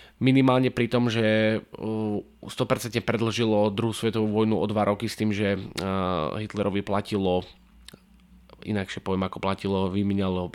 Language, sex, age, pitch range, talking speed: English, male, 20-39, 100-120 Hz, 130 wpm